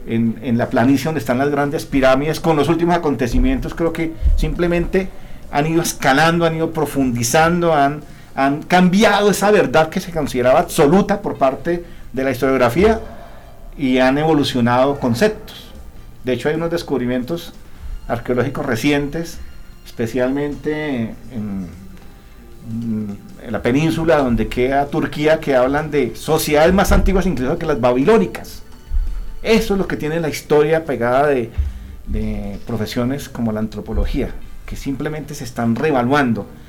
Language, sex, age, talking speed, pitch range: Spanish, male, 50-69, 135 wpm, 120-165 Hz